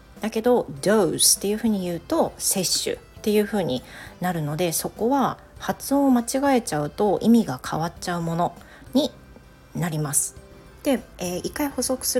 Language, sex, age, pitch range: Japanese, female, 40-59, 165-235 Hz